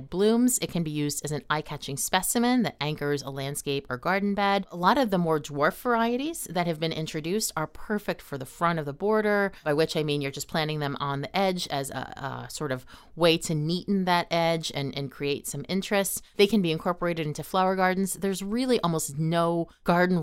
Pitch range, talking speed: 150-195 Hz, 215 wpm